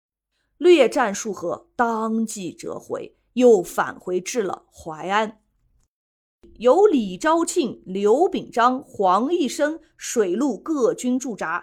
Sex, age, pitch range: female, 30-49, 200-315 Hz